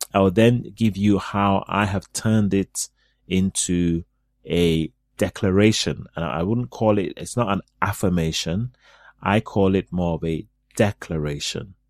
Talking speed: 145 wpm